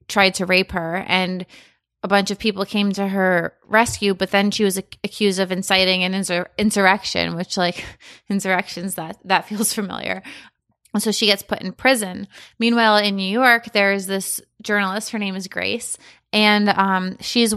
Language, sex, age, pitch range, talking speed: English, female, 20-39, 185-220 Hz, 180 wpm